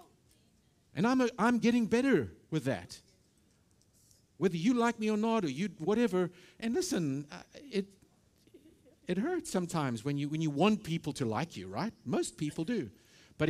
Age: 50-69